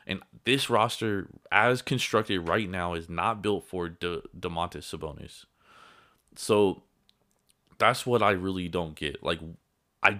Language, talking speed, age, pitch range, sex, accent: English, 130 wpm, 20-39, 85-105 Hz, male, American